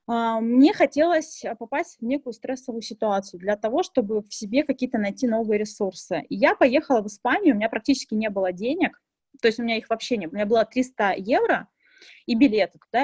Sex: female